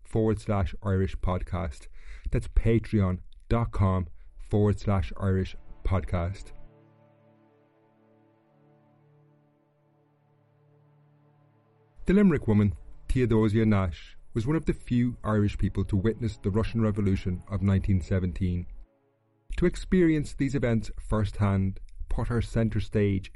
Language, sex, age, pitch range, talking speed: English, male, 30-49, 95-115 Hz, 100 wpm